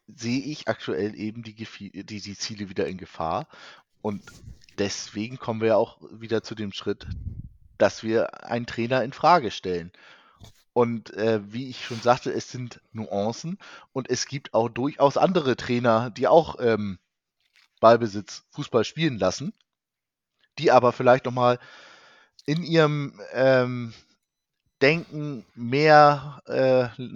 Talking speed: 135 wpm